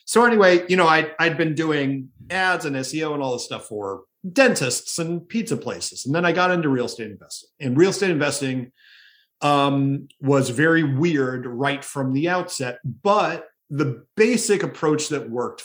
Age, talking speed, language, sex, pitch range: 40-59, 175 wpm, English, male, 120-165 Hz